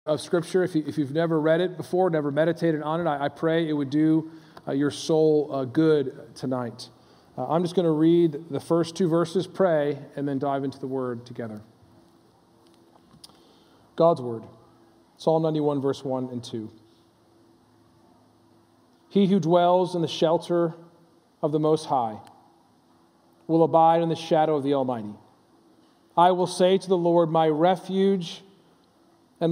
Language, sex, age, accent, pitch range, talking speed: English, male, 40-59, American, 135-165 Hz, 150 wpm